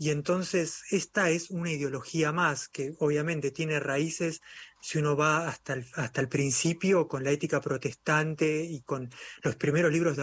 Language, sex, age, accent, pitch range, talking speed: Spanish, male, 30-49, Argentinian, 140-165 Hz, 165 wpm